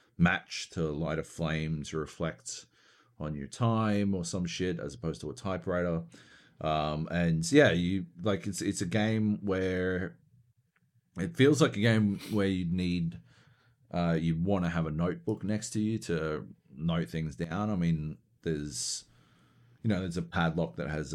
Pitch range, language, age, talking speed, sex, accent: 75-100 Hz, English, 40-59, 170 wpm, male, Australian